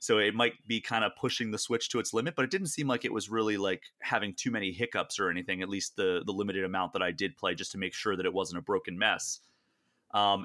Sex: male